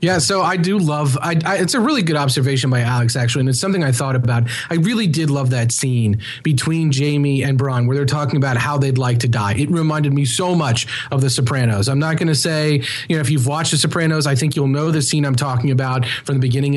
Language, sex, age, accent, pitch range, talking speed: English, male, 30-49, American, 125-155 Hz, 250 wpm